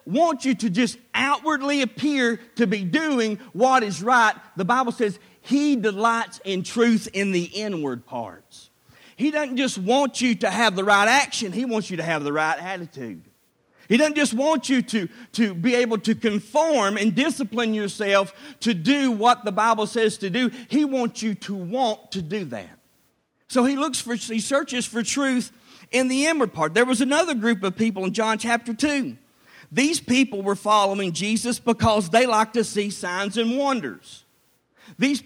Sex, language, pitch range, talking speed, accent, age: male, English, 200-255 Hz, 180 wpm, American, 50-69